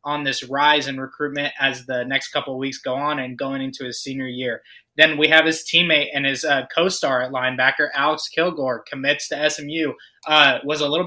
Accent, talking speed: American, 210 wpm